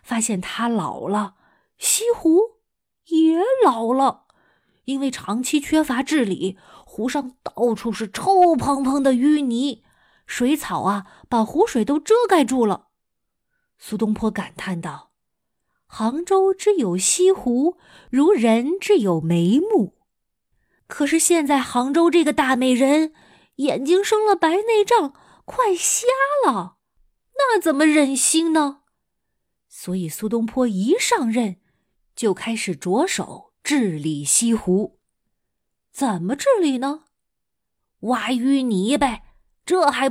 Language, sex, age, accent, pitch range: Chinese, female, 20-39, native, 225-320 Hz